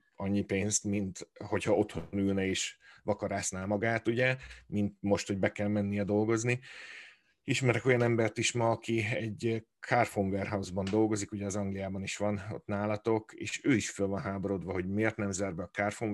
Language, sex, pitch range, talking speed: Hungarian, male, 95-110 Hz, 170 wpm